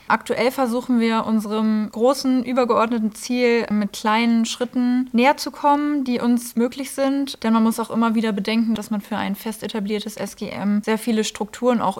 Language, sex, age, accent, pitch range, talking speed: German, female, 20-39, German, 205-230 Hz, 175 wpm